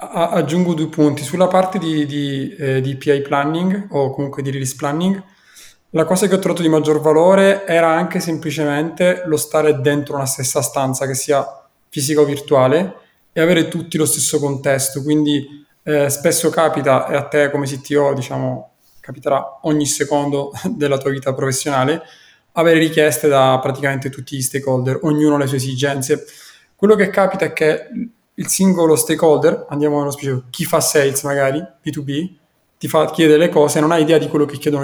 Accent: native